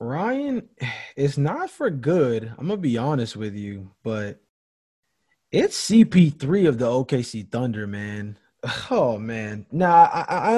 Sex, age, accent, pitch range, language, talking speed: male, 20-39, American, 120-175 Hz, English, 135 wpm